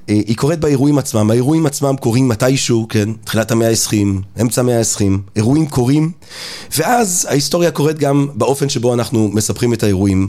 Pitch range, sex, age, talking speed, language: 105-135 Hz, male, 30-49, 155 wpm, Hebrew